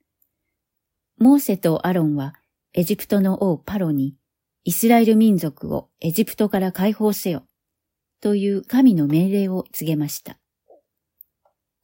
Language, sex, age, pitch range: Japanese, female, 40-59, 155-215 Hz